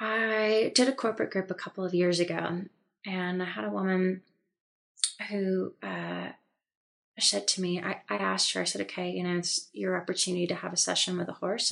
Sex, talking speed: female, 200 wpm